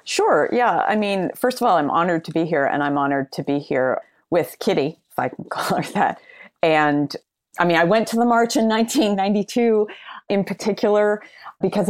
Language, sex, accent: English, female, American